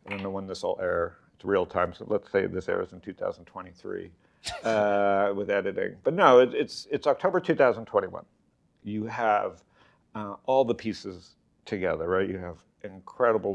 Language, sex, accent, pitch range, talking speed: English, male, American, 100-120 Hz, 165 wpm